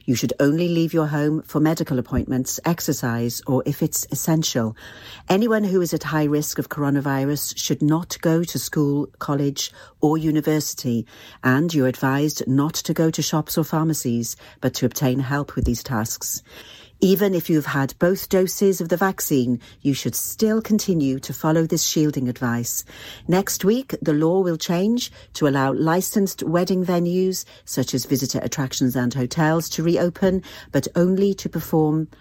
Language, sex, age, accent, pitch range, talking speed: English, female, 50-69, British, 135-165 Hz, 165 wpm